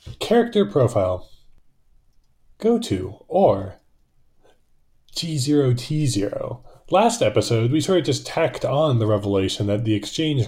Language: English